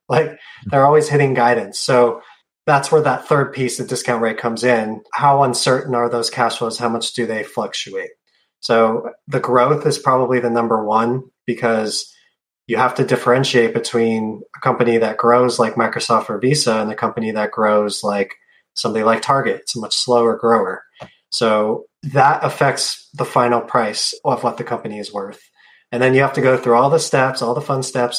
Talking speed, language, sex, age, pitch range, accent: 190 wpm, English, male, 20-39, 115-135 Hz, American